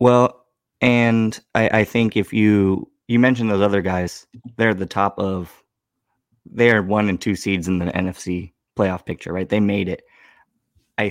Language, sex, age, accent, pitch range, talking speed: English, male, 20-39, American, 95-125 Hz, 165 wpm